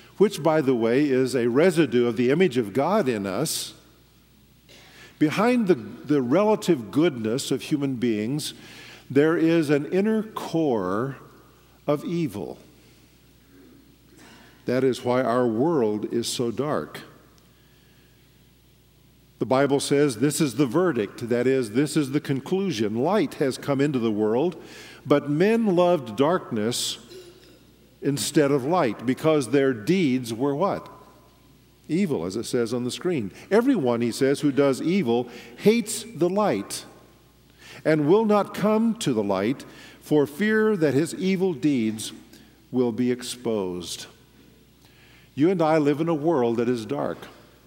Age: 50-69